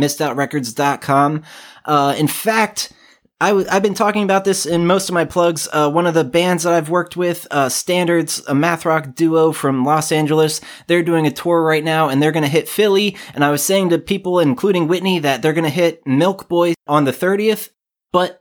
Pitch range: 135-175 Hz